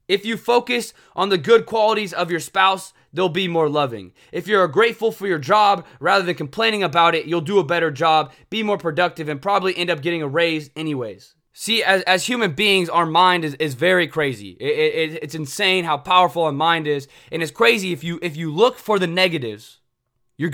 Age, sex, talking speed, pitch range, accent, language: 20-39, male, 215 wpm, 160-200 Hz, American, English